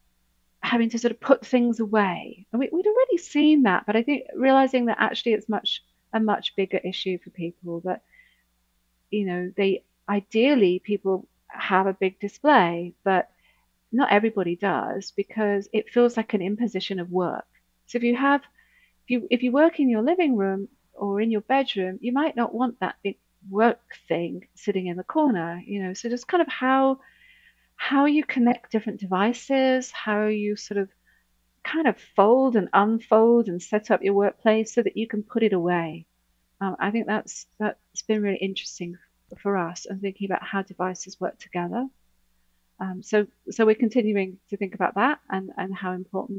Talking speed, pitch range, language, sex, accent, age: 185 wpm, 180-240 Hz, English, female, British, 40-59